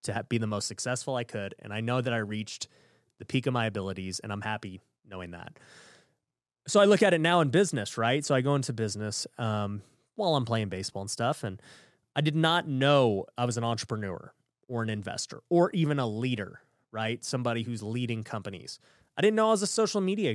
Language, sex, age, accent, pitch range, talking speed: English, male, 30-49, American, 110-145 Hz, 215 wpm